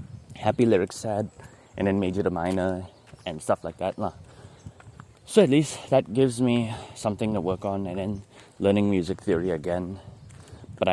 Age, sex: 20-39, male